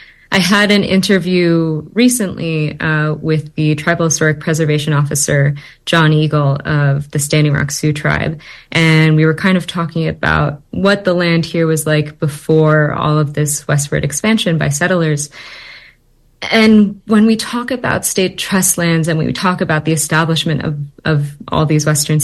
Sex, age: female, 30-49